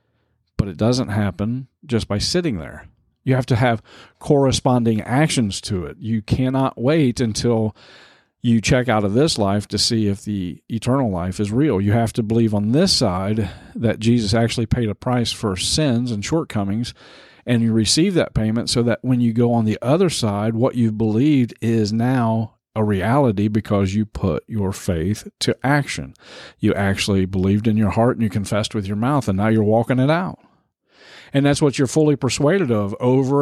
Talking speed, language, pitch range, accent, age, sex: 190 wpm, English, 105-130 Hz, American, 50-69, male